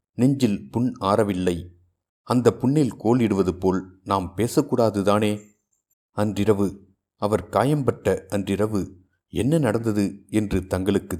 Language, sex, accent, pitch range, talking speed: Tamil, male, native, 95-110 Hz, 90 wpm